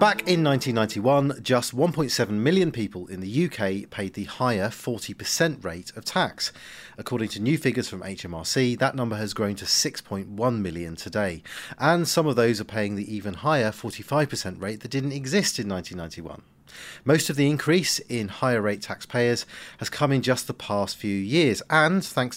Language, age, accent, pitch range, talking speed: English, 40-59, British, 105-145 Hz, 175 wpm